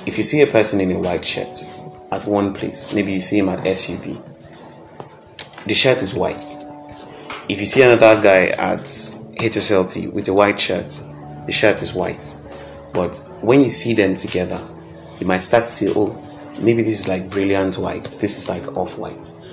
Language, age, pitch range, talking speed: English, 30-49, 90-105 Hz, 180 wpm